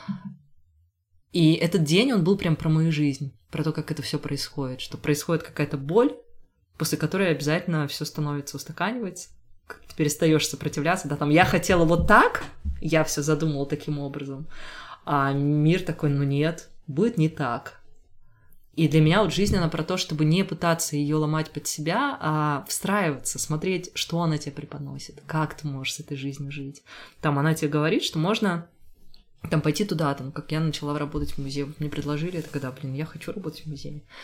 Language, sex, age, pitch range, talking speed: Russian, female, 20-39, 140-160 Hz, 180 wpm